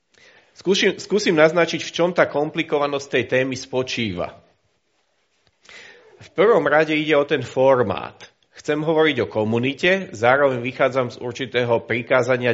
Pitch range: 125-150 Hz